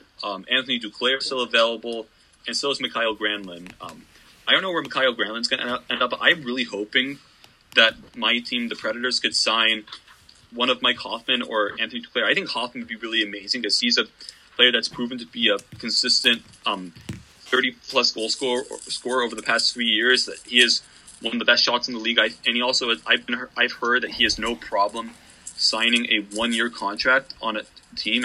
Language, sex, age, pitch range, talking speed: English, male, 20-39, 110-125 Hz, 205 wpm